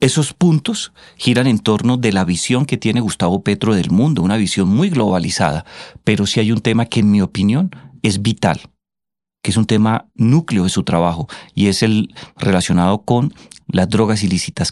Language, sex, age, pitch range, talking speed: Spanish, male, 40-59, 100-130 Hz, 185 wpm